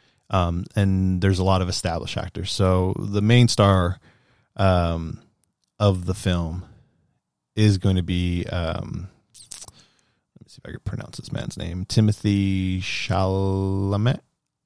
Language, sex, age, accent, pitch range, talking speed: English, male, 30-49, American, 90-120 Hz, 135 wpm